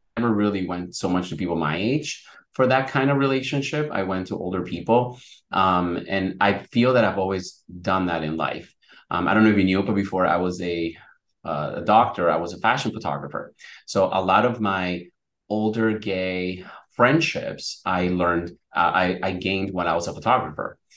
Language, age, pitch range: English, 30-49, 90-105 Hz